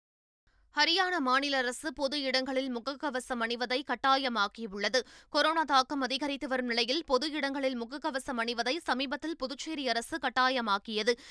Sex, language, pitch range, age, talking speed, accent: female, Tamil, 245-290 Hz, 20-39, 110 wpm, native